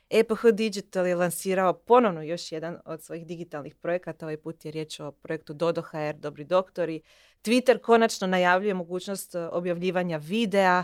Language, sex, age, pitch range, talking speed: Croatian, female, 20-39, 160-195 Hz, 150 wpm